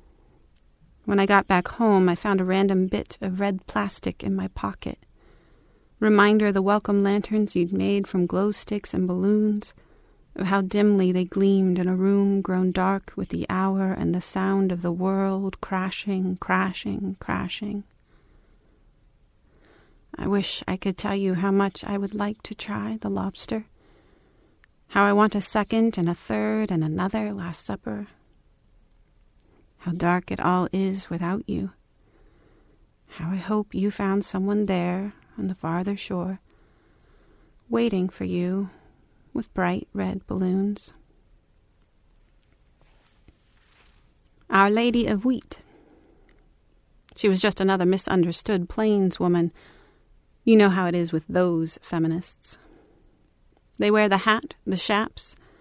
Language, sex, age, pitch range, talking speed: English, female, 40-59, 180-205 Hz, 135 wpm